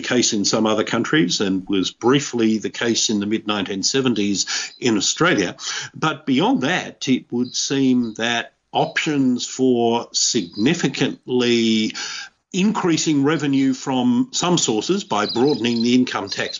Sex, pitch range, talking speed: male, 110-130 Hz, 130 wpm